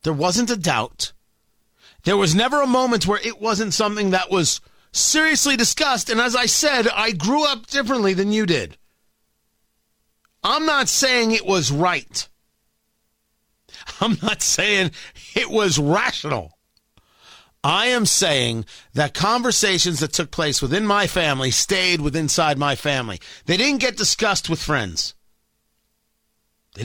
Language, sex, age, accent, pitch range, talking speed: English, male, 40-59, American, 145-235 Hz, 140 wpm